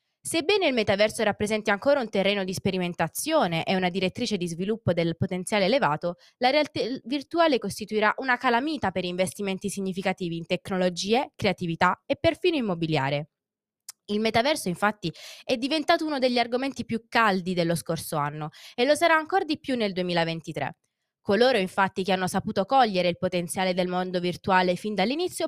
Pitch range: 180-255 Hz